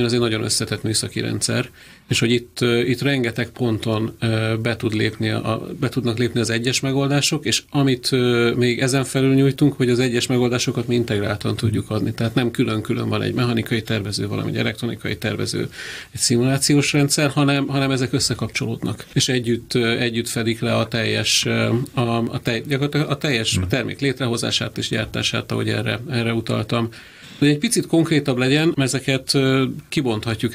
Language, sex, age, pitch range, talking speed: Hungarian, male, 40-59, 115-135 Hz, 155 wpm